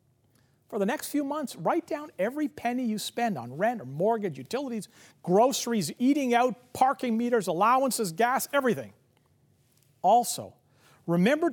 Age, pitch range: 50-69, 145-235 Hz